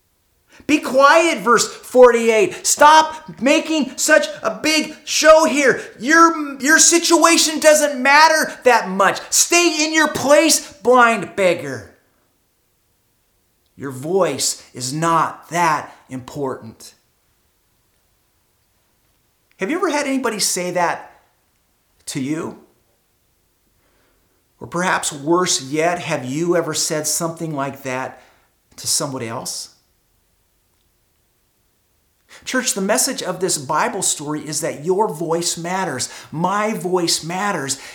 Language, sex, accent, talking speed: English, male, American, 110 wpm